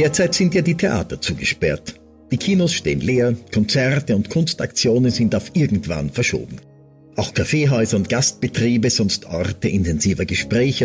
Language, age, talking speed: German, 50-69, 140 wpm